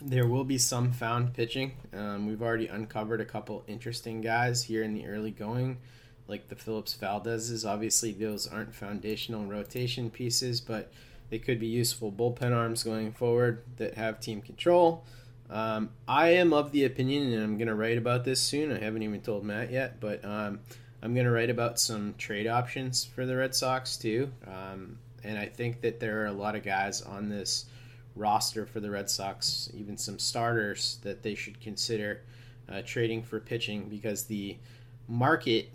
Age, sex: 20-39, male